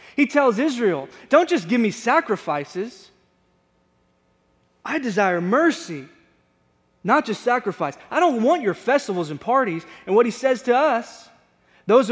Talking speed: 140 wpm